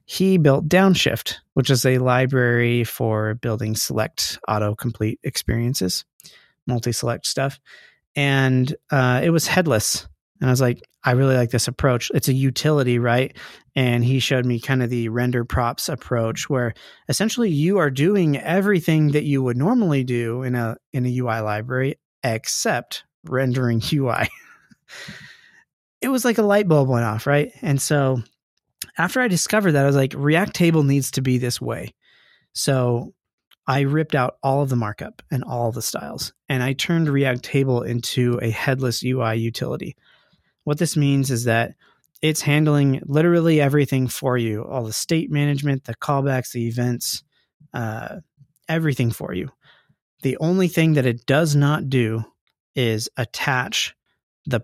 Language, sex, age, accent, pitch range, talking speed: English, male, 30-49, American, 120-150 Hz, 155 wpm